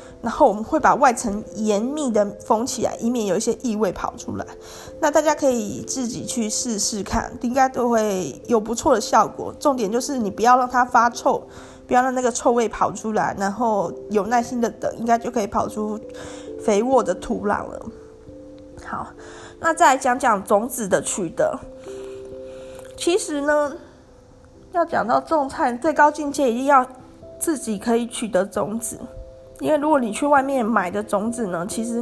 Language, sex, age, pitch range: Chinese, female, 20-39, 205-260 Hz